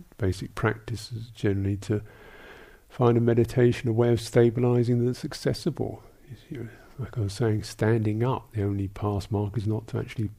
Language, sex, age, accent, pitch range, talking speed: English, male, 50-69, British, 95-115 Hz, 170 wpm